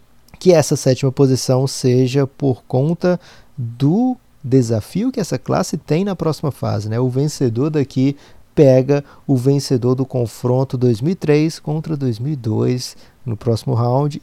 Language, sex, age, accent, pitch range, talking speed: Portuguese, male, 20-39, Brazilian, 125-155 Hz, 130 wpm